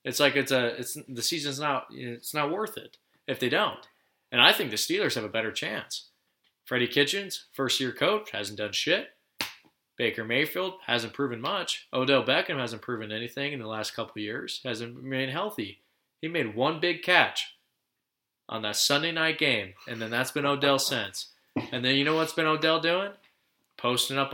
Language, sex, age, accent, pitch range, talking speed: English, male, 20-39, American, 120-145 Hz, 190 wpm